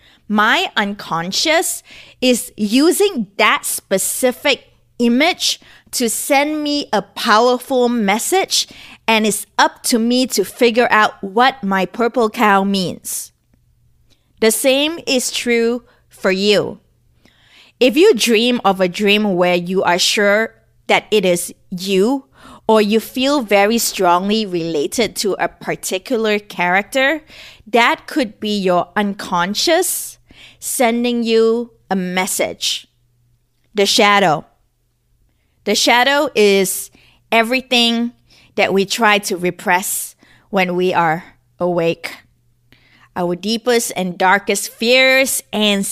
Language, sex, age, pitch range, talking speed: English, female, 20-39, 180-240 Hz, 110 wpm